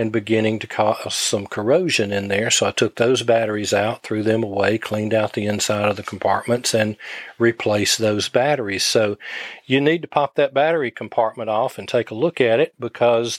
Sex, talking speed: male, 195 wpm